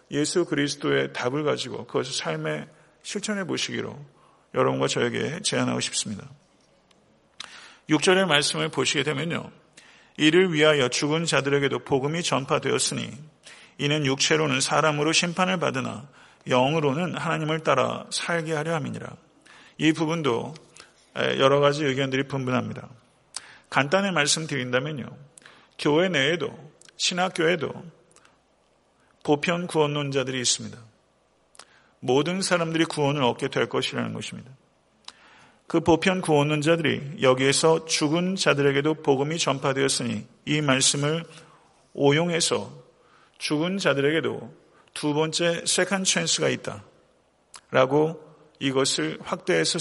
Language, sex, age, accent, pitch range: Korean, male, 40-59, native, 140-170 Hz